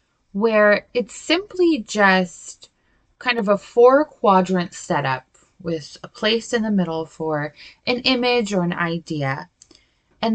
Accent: American